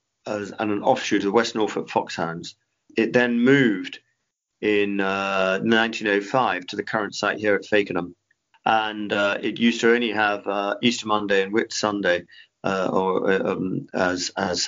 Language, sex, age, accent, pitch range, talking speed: English, male, 40-59, British, 95-115 Hz, 150 wpm